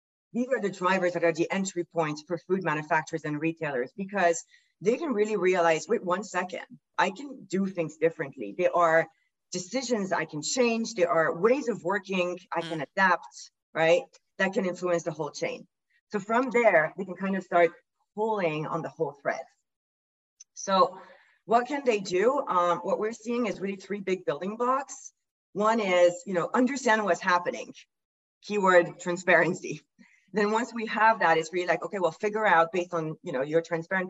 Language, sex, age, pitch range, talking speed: English, female, 40-59, 170-215 Hz, 180 wpm